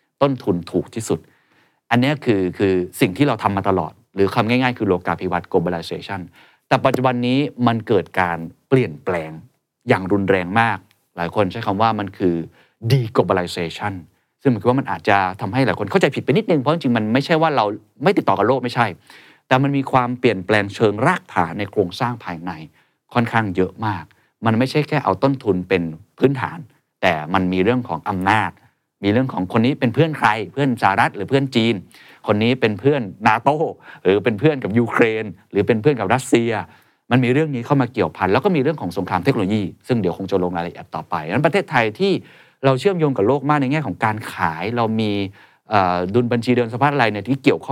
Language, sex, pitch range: Thai, male, 100-135 Hz